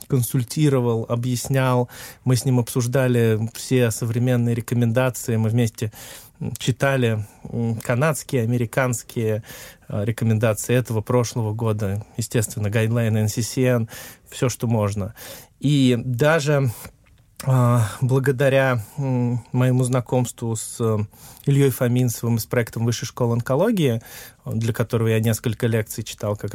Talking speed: 100 wpm